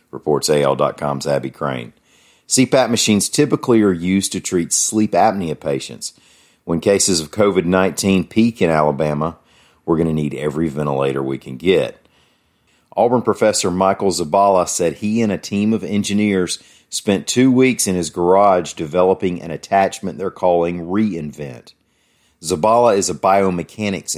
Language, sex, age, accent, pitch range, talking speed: English, male, 40-59, American, 80-100 Hz, 140 wpm